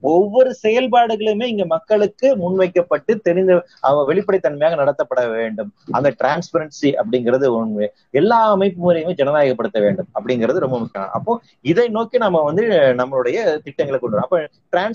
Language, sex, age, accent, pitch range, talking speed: Tamil, male, 30-49, native, 175-225 Hz, 100 wpm